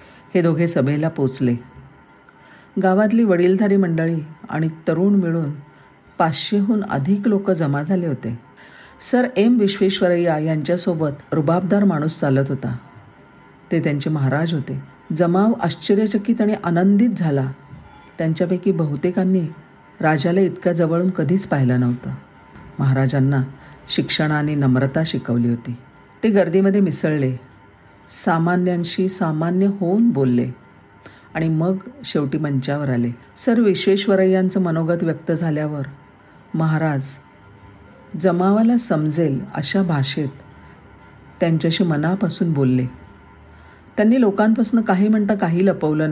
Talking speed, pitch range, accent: 100 wpm, 130-185 Hz, native